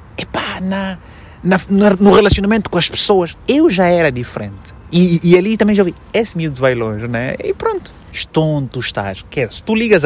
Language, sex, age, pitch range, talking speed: Portuguese, male, 20-39, 110-185 Hz, 215 wpm